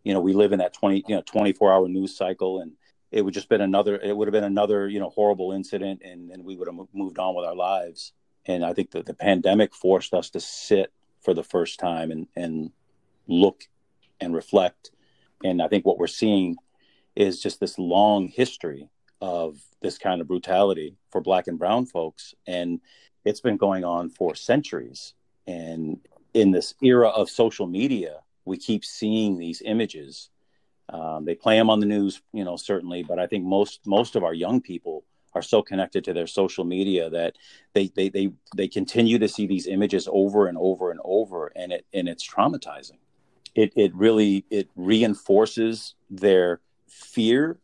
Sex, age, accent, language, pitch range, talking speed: male, 40-59, American, English, 90-105 Hz, 190 wpm